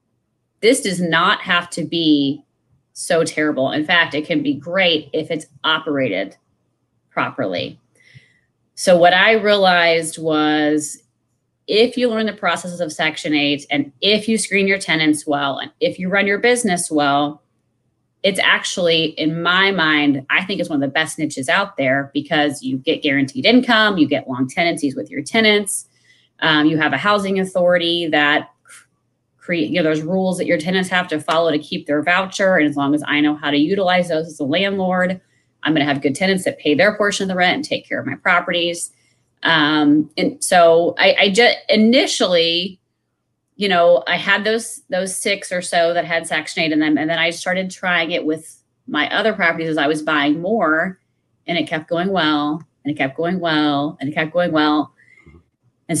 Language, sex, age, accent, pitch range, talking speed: English, female, 30-49, American, 150-185 Hz, 190 wpm